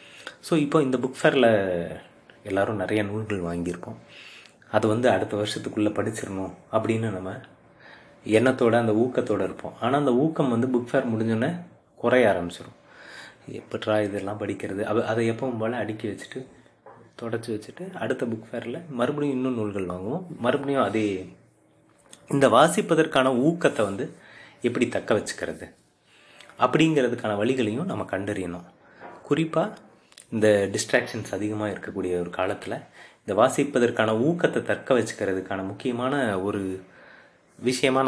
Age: 30-49